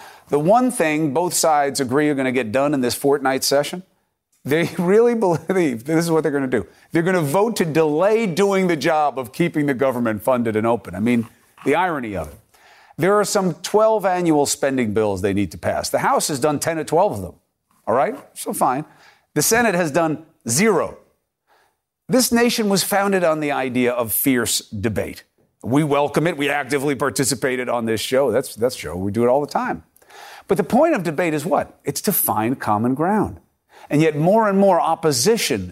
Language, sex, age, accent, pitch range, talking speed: English, male, 40-59, American, 130-180 Hz, 205 wpm